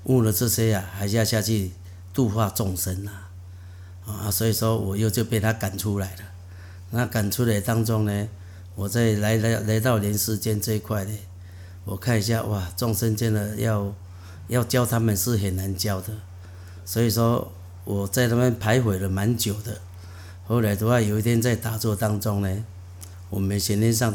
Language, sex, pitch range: Chinese, male, 95-110 Hz